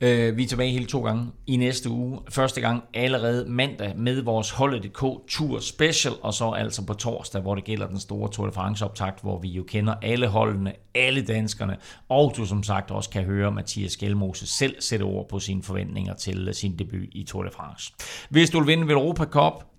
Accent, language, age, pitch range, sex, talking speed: native, Danish, 30-49, 100-125 Hz, male, 205 wpm